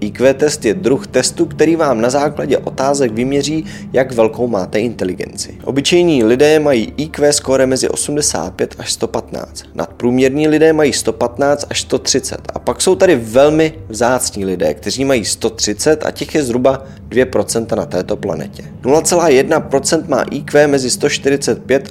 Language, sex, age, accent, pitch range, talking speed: Czech, male, 20-39, native, 110-155 Hz, 145 wpm